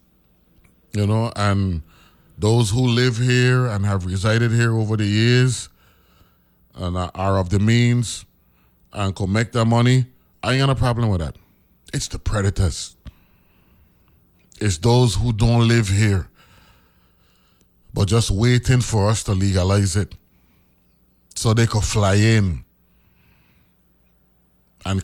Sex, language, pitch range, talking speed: male, English, 85-125 Hz, 130 wpm